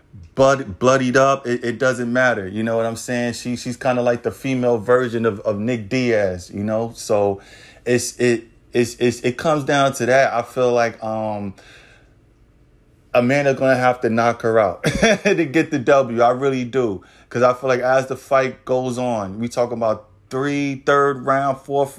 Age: 20-39